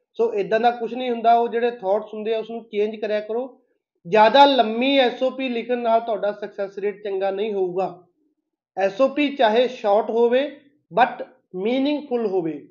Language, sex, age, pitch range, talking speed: Punjabi, male, 30-49, 215-275 Hz, 160 wpm